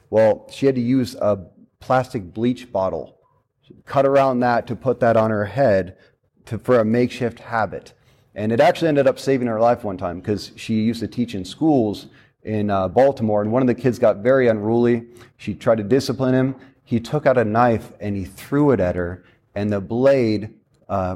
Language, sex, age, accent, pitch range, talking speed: English, male, 30-49, American, 110-135 Hz, 205 wpm